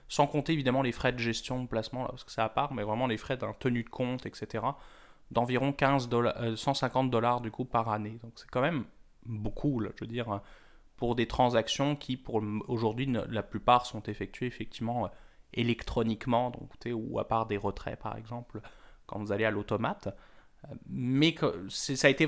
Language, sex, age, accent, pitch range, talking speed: French, male, 20-39, French, 115-135 Hz, 195 wpm